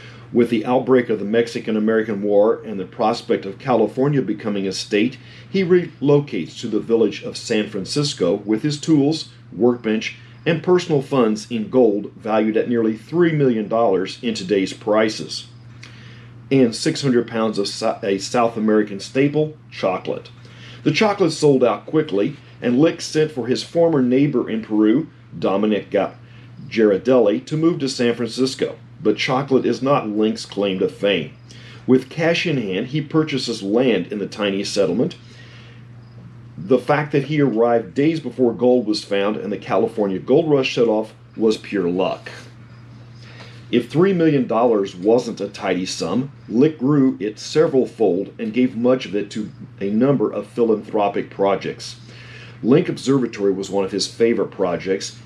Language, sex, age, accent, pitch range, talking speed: English, male, 40-59, American, 110-130 Hz, 155 wpm